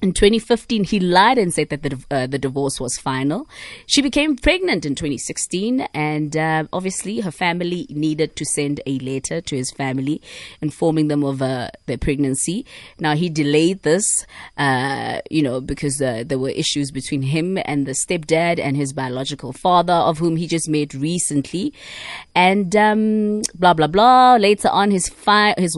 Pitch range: 140-180 Hz